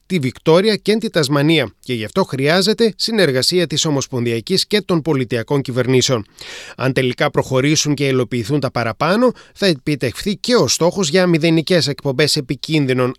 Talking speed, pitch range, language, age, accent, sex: 145 wpm, 135-185 Hz, Greek, 30-49, native, male